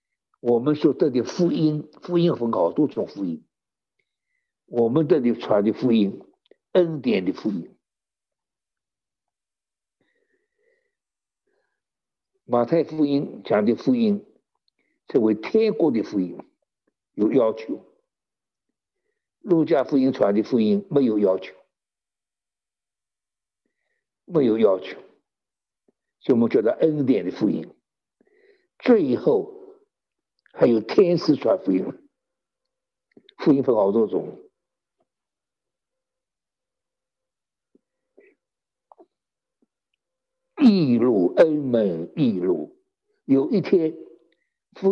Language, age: Chinese, 60-79